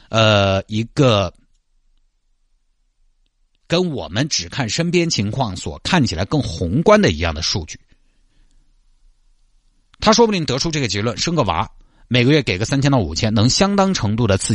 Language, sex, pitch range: Chinese, male, 95-145 Hz